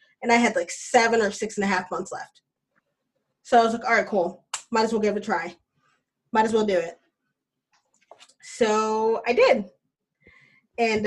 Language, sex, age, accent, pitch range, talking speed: English, female, 20-39, American, 195-245 Hz, 190 wpm